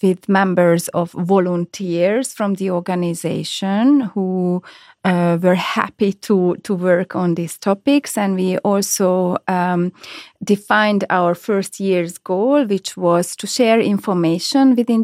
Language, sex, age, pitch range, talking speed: Hungarian, female, 30-49, 180-210 Hz, 130 wpm